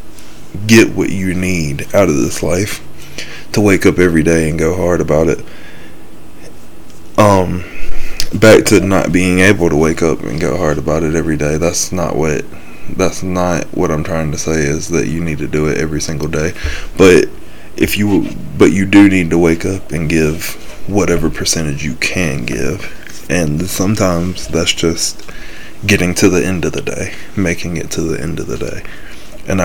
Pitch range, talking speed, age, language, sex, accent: 80-90 Hz, 185 wpm, 20-39, English, male, American